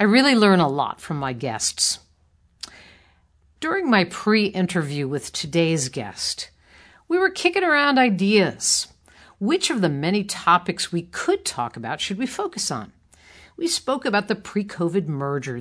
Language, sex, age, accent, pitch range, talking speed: English, female, 50-69, American, 165-245 Hz, 145 wpm